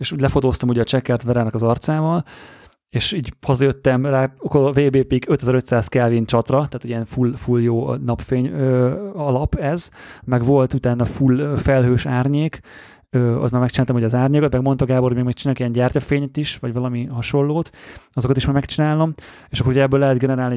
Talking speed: 180 wpm